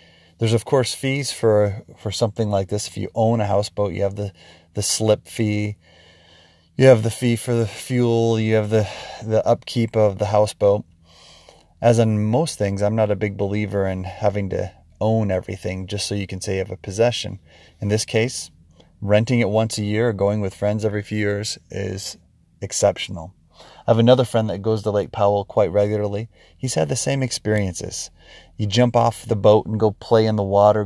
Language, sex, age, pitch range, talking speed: English, male, 30-49, 100-115 Hz, 200 wpm